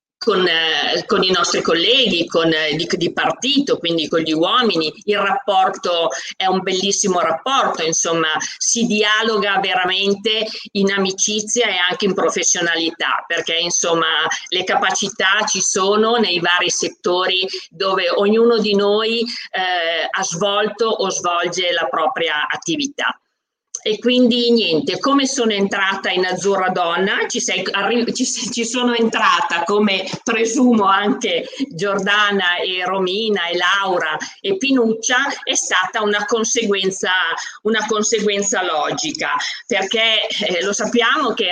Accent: native